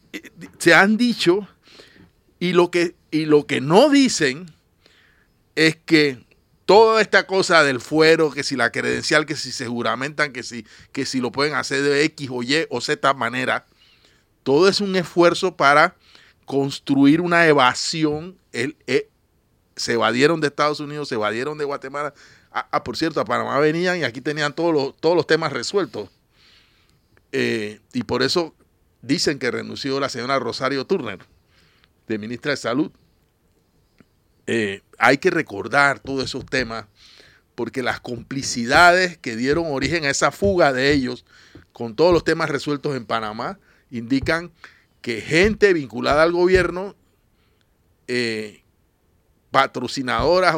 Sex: male